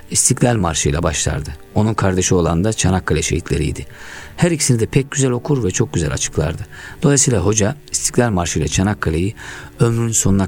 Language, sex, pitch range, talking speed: Turkish, male, 85-115 Hz, 160 wpm